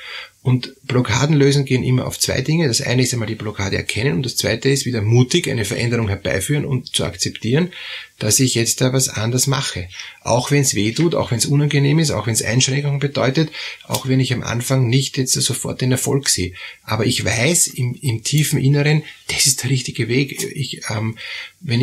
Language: German